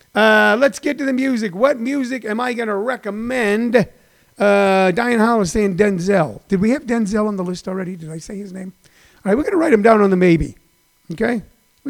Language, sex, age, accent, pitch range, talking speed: English, male, 40-59, American, 175-215 Hz, 220 wpm